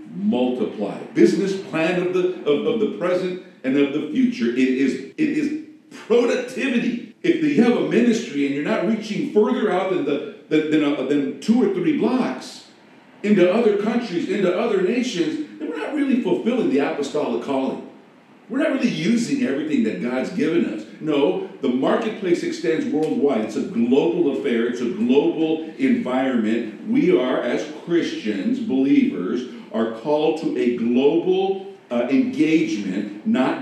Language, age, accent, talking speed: English, 50-69, American, 155 wpm